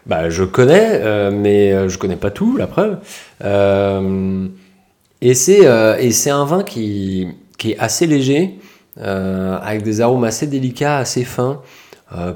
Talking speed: 165 wpm